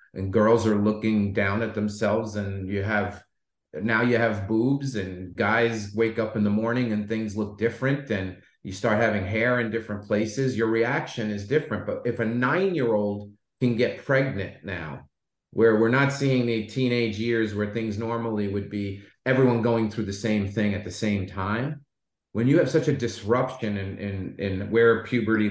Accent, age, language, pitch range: American, 30-49, English, 105-125 Hz